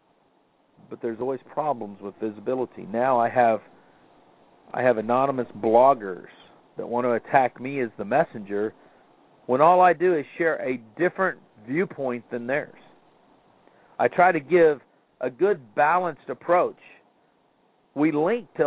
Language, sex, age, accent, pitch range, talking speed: English, male, 50-69, American, 130-180 Hz, 140 wpm